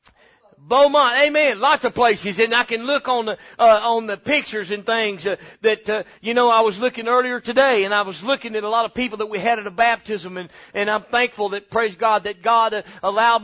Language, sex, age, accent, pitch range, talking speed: English, male, 40-59, American, 205-235 Hz, 235 wpm